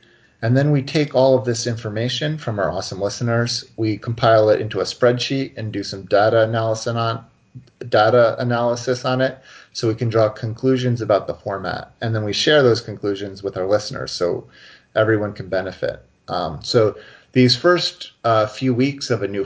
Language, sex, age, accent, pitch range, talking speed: English, male, 40-59, American, 105-125 Hz, 180 wpm